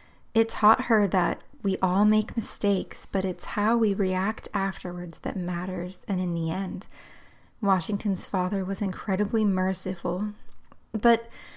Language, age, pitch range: English, 20-39, 185-225 Hz